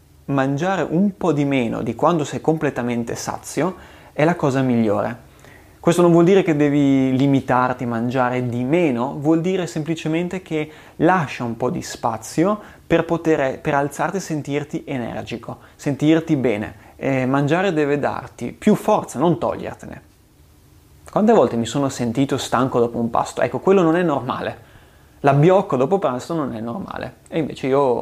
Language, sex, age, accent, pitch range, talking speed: Italian, male, 30-49, native, 120-160 Hz, 155 wpm